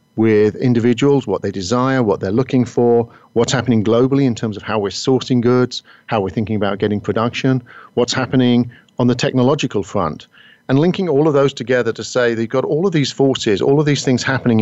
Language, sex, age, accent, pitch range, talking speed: English, male, 50-69, British, 110-125 Hz, 205 wpm